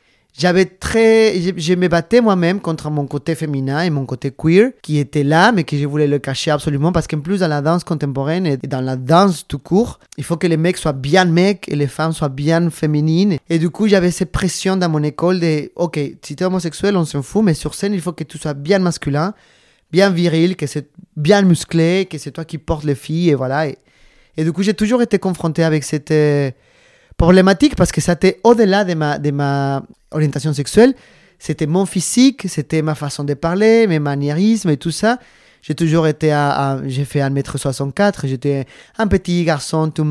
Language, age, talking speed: French, 20-39, 215 wpm